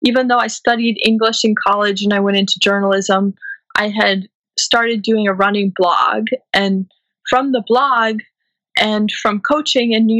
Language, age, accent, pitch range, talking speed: English, 20-39, American, 195-225 Hz, 165 wpm